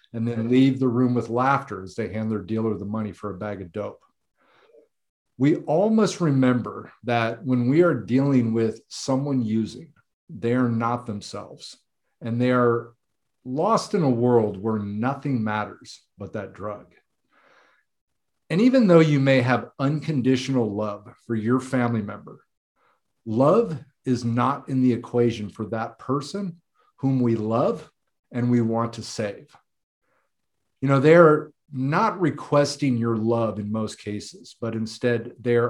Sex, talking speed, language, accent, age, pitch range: male, 150 wpm, English, American, 50-69, 110-135 Hz